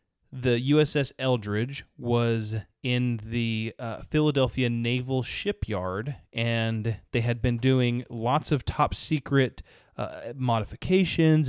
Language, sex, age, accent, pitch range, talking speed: English, male, 30-49, American, 110-135 Hz, 110 wpm